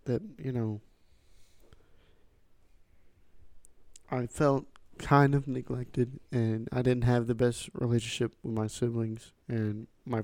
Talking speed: 115 wpm